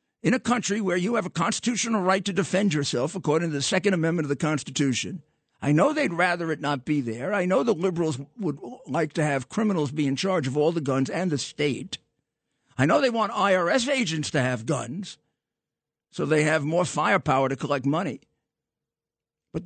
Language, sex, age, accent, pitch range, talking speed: English, male, 50-69, American, 135-195 Hz, 200 wpm